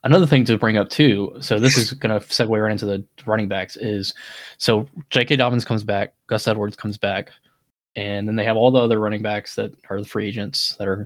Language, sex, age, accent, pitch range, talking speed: English, male, 20-39, American, 105-125 Hz, 235 wpm